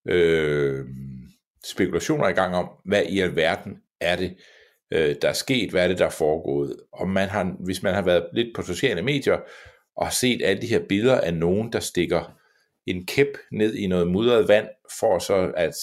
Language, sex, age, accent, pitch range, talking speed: Danish, male, 60-79, native, 85-105 Hz, 195 wpm